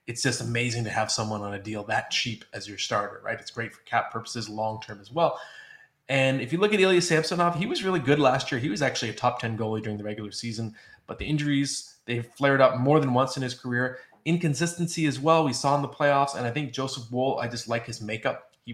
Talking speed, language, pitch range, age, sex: 250 wpm, English, 115-145 Hz, 20-39, male